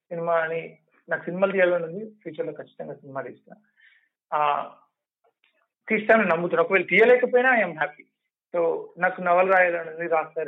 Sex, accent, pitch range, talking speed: male, native, 160-200 Hz, 125 wpm